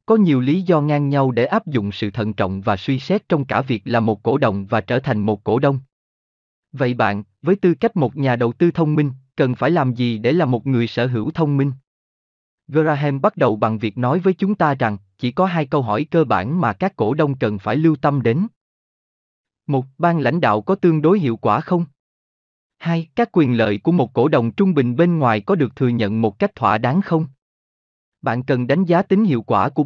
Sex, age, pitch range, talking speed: male, 20-39, 110-160 Hz, 235 wpm